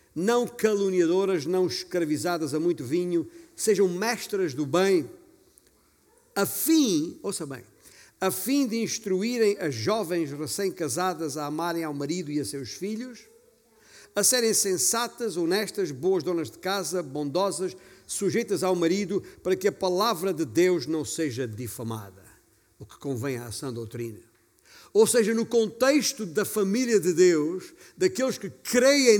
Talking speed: 140 wpm